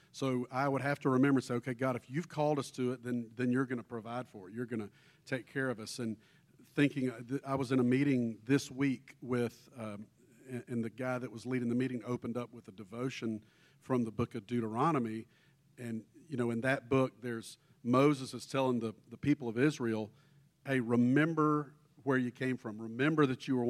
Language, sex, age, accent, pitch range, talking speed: English, male, 50-69, American, 120-140 Hz, 215 wpm